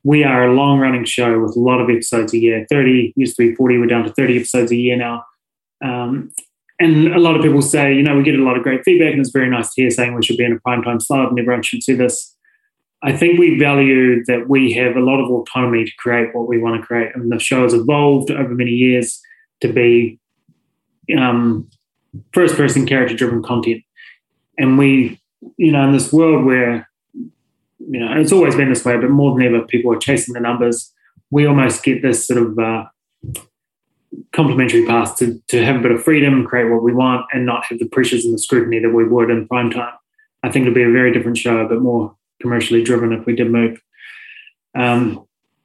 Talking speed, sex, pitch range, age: 220 wpm, male, 120-140 Hz, 20-39